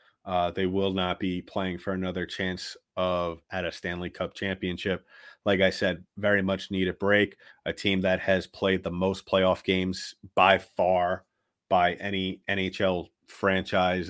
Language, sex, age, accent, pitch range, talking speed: English, male, 30-49, American, 90-105 Hz, 160 wpm